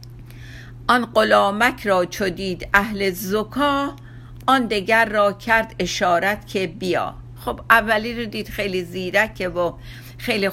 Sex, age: female, 50-69